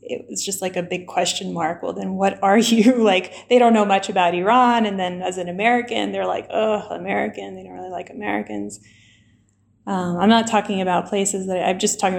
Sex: female